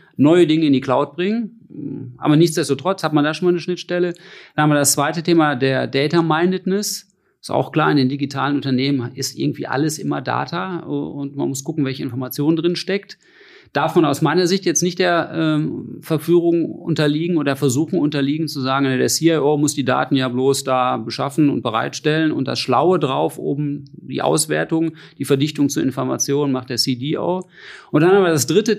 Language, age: German, 40-59